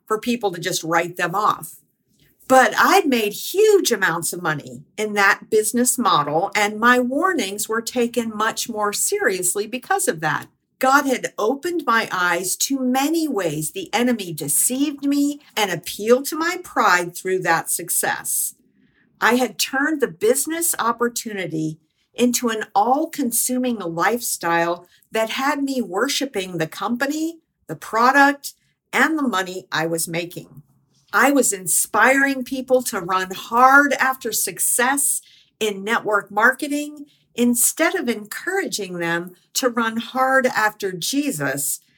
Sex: female